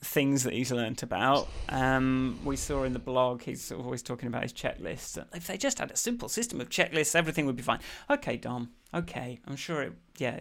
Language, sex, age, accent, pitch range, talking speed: English, male, 30-49, British, 125-160 Hz, 225 wpm